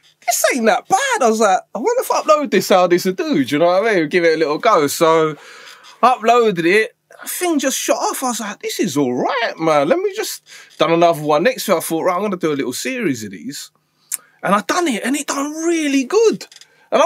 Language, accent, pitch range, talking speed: English, British, 160-255 Hz, 260 wpm